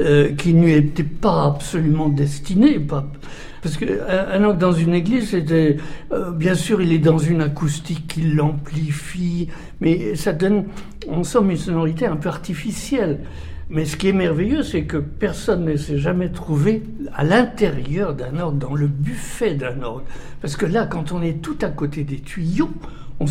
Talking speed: 170 wpm